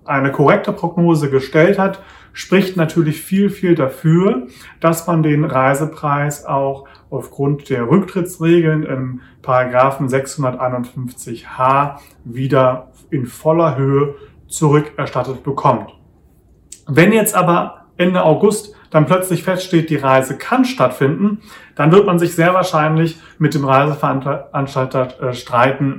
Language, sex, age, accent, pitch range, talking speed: German, male, 30-49, German, 130-170 Hz, 115 wpm